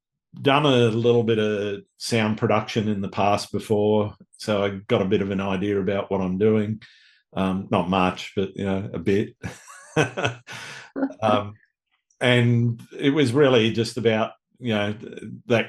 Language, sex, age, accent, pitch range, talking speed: English, male, 50-69, Australian, 105-120 Hz, 155 wpm